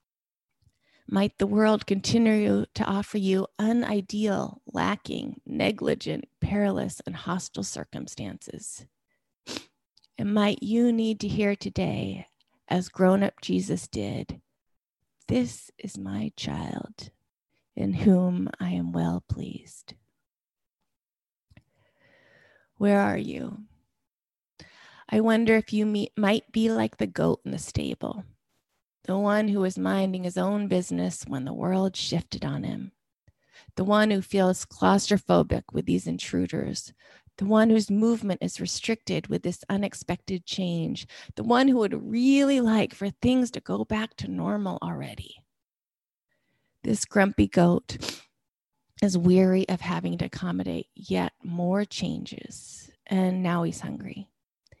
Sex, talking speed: female, 125 wpm